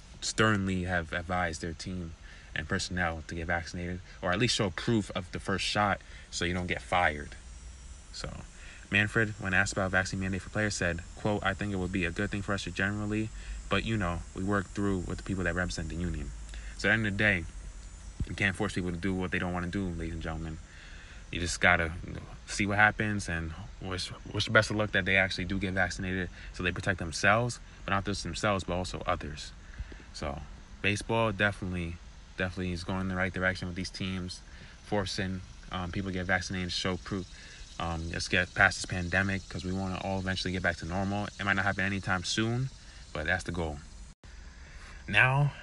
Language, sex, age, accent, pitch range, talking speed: English, male, 30-49, American, 85-105 Hz, 210 wpm